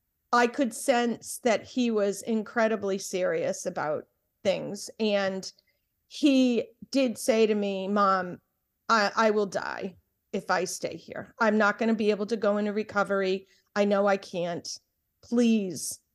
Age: 40-59